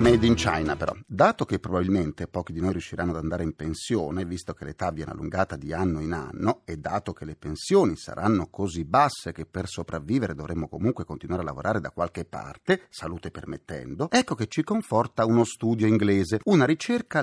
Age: 40-59